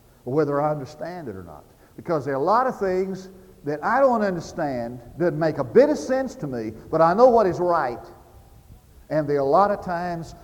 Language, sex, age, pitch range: English, male, 50-69, 120-175 Hz